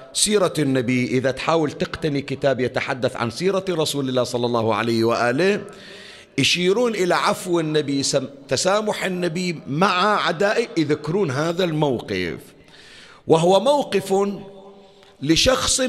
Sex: male